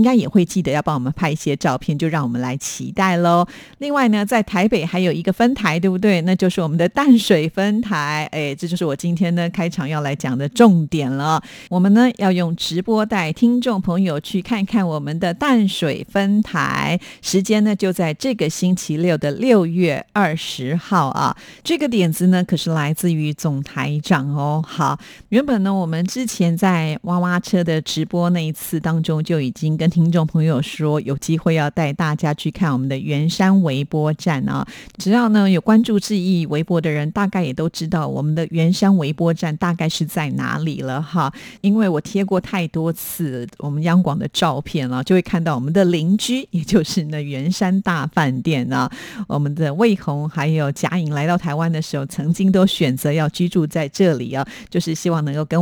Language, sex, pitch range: Chinese, female, 155-190 Hz